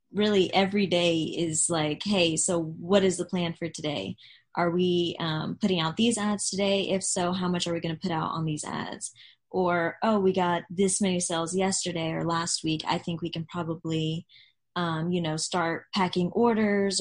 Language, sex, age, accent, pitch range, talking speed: English, female, 20-39, American, 165-190 Hz, 200 wpm